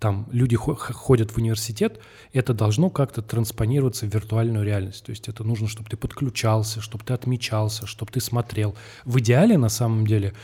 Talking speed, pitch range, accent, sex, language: 170 wpm, 110-130 Hz, native, male, Russian